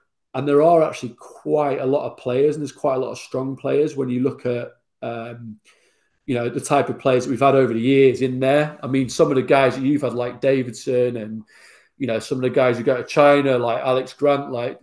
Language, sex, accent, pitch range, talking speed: English, male, British, 120-145 Hz, 250 wpm